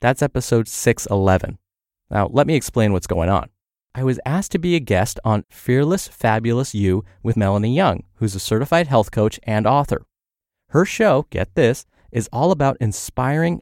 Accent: American